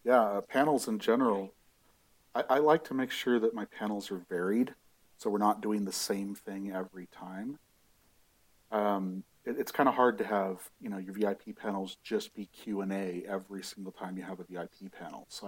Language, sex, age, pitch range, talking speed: English, male, 40-59, 95-105 Hz, 190 wpm